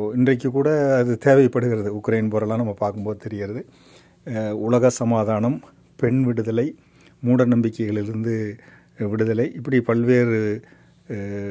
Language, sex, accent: Tamil, male, native